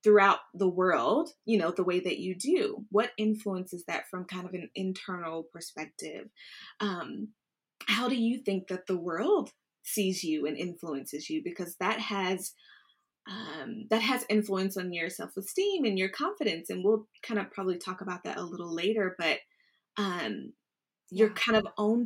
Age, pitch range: 20-39, 180-220 Hz